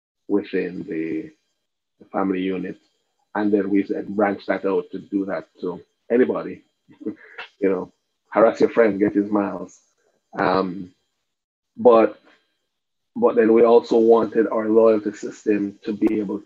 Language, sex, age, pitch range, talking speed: English, male, 30-49, 100-120 Hz, 140 wpm